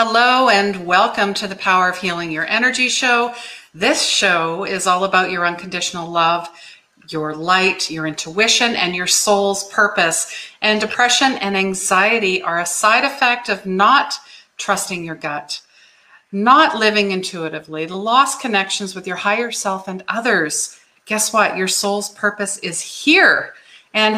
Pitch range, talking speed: 185-245 Hz, 150 wpm